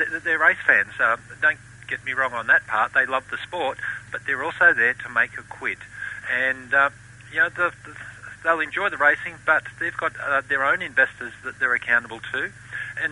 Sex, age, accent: male, 50-69, Australian